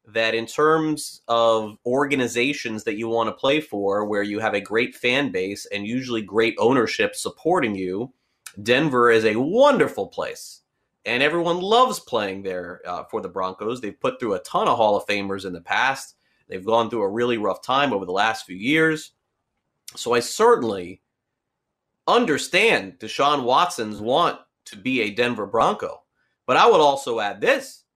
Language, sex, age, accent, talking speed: English, male, 30-49, American, 170 wpm